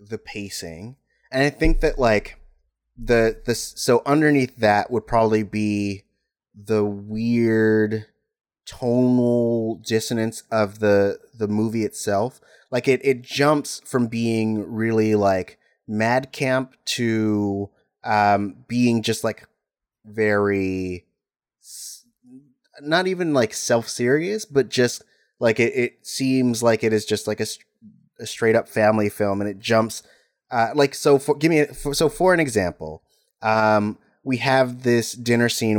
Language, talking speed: English, 135 wpm